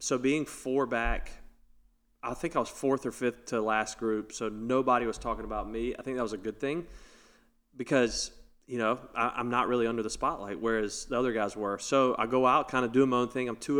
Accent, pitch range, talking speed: American, 115-135 Hz, 230 wpm